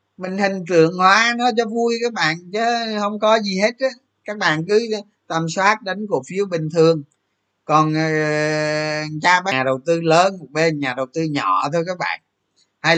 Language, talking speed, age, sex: Vietnamese, 200 wpm, 20-39, male